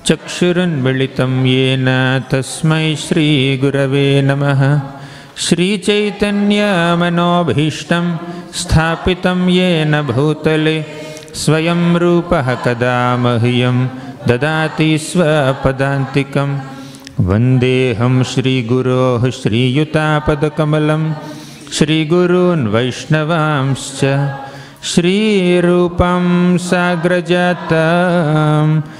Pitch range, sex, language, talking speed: 130-170 Hz, male, English, 60 wpm